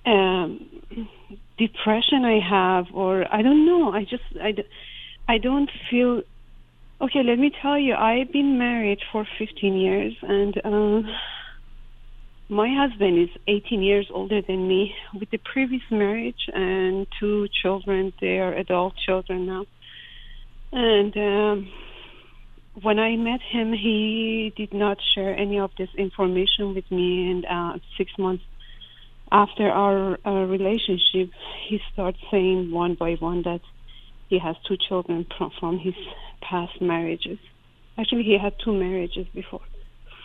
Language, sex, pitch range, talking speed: English, female, 185-220 Hz, 135 wpm